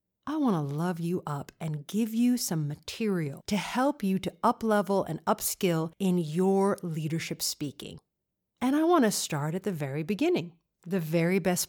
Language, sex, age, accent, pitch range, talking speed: English, female, 50-69, American, 165-230 Hz, 175 wpm